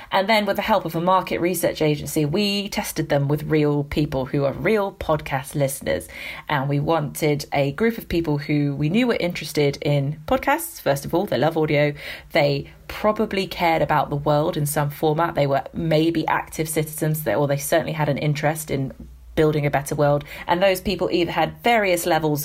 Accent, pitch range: British, 145-170 Hz